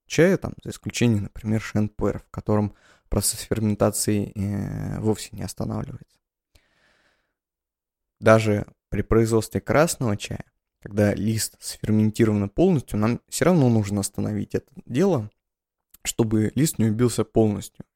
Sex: male